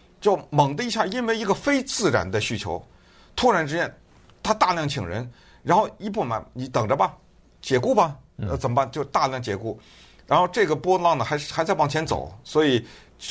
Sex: male